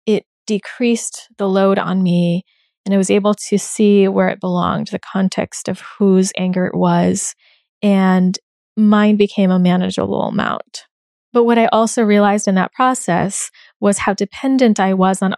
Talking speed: 160 wpm